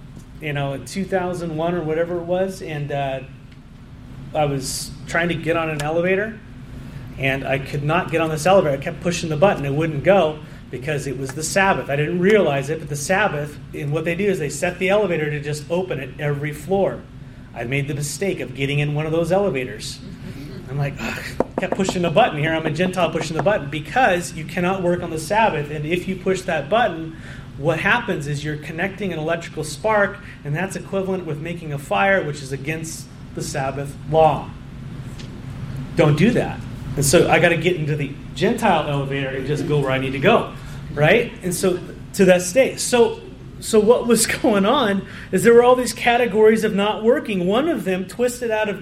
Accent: American